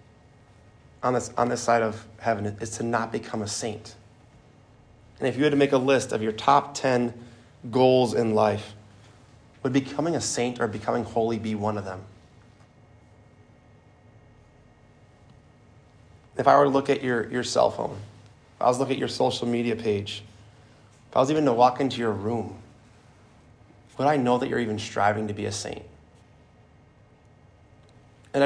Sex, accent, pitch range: male, American, 110-125 Hz